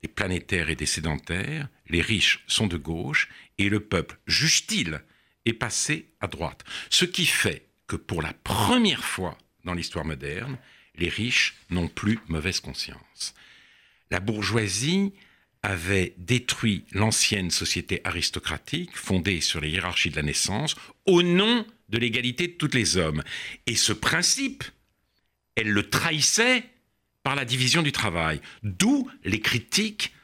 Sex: male